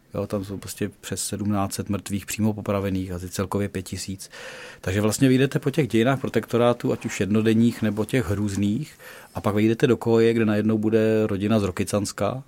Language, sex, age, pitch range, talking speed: Czech, male, 40-59, 100-115 Hz, 170 wpm